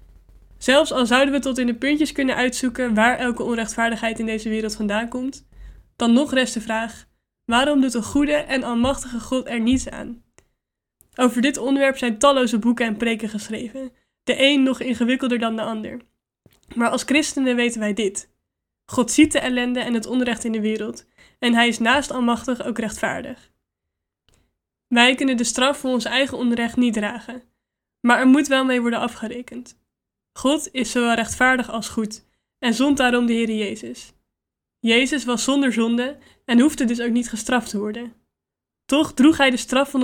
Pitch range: 230-260 Hz